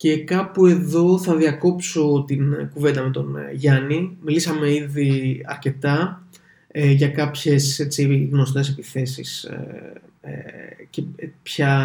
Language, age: Greek, 20-39